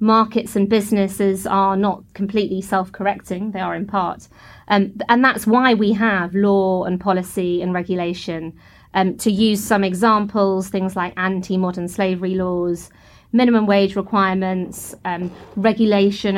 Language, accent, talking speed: English, British, 135 wpm